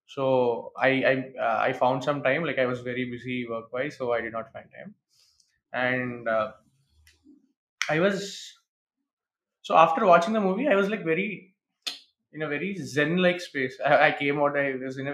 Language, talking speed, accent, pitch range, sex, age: Telugu, 195 wpm, native, 135-190 Hz, male, 20-39